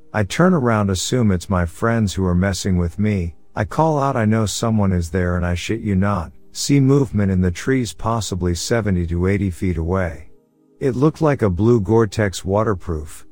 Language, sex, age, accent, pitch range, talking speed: English, male, 50-69, American, 90-115 Hz, 195 wpm